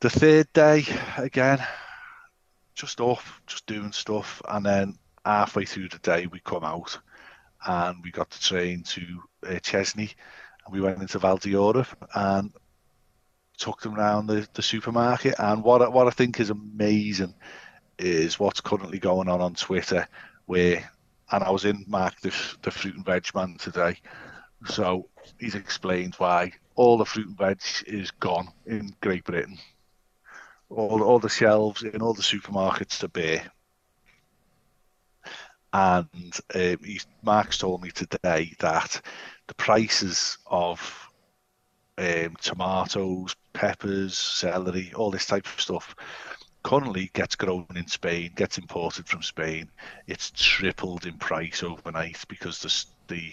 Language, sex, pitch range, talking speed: English, male, 90-110 Hz, 140 wpm